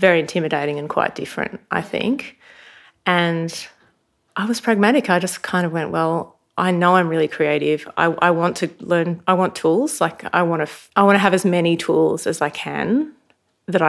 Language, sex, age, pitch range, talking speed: English, female, 30-49, 165-190 Hz, 200 wpm